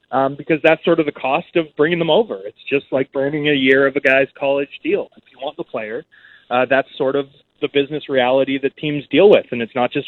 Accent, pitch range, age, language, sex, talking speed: American, 130-150 Hz, 30-49, English, male, 250 wpm